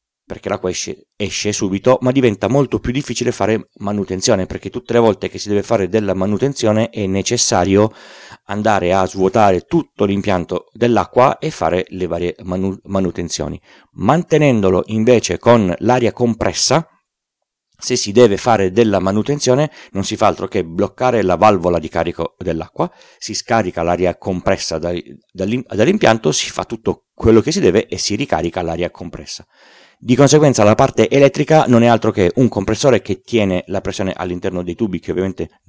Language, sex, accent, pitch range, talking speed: Italian, male, native, 90-115 Hz, 160 wpm